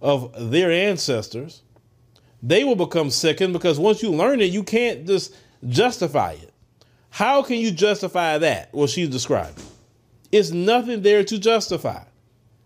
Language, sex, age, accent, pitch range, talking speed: English, male, 30-49, American, 120-180 Hz, 140 wpm